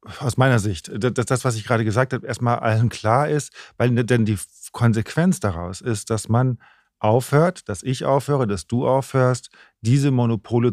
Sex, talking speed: male, 175 wpm